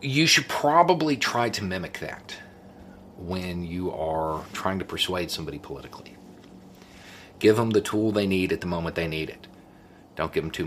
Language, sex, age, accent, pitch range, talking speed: English, male, 40-59, American, 85-105 Hz, 175 wpm